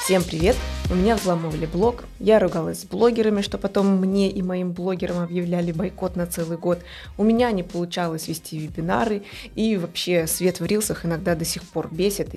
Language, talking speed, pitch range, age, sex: Russian, 180 wpm, 170-205 Hz, 20-39, female